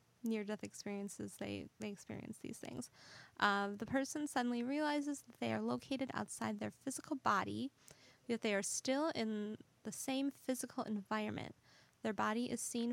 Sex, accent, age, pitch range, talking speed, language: female, American, 10-29, 200-245 Hz, 155 wpm, English